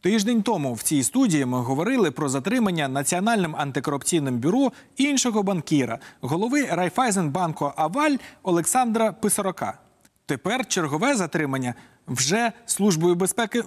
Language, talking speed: Ukrainian, 115 wpm